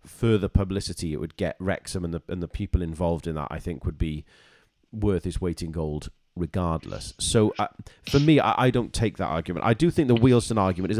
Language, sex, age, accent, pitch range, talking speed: English, male, 40-59, British, 80-105 Hz, 225 wpm